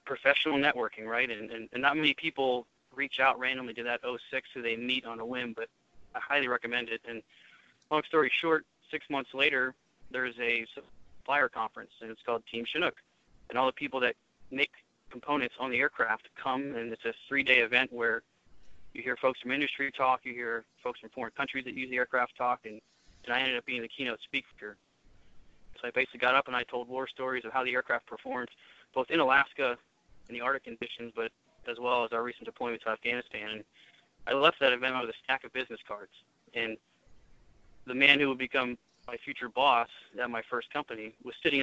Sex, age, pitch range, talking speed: male, 20-39, 115-140 Hz, 205 wpm